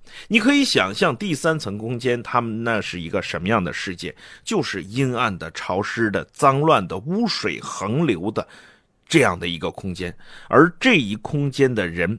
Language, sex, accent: Chinese, male, native